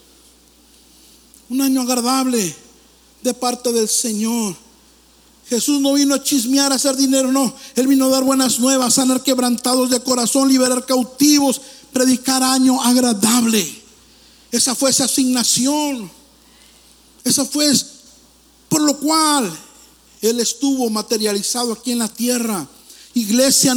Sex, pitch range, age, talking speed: male, 255-300 Hz, 50-69, 125 wpm